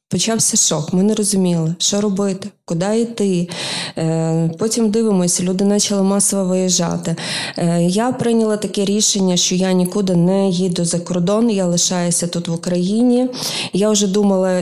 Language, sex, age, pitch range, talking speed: Ukrainian, female, 20-39, 170-200 Hz, 140 wpm